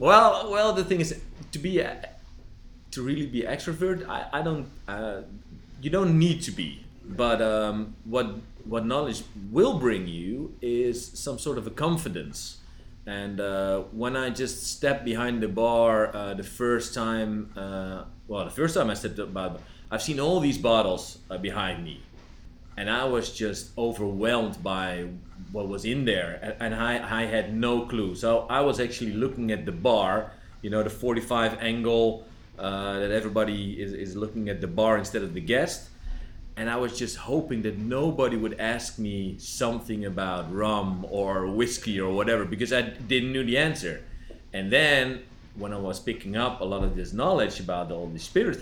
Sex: male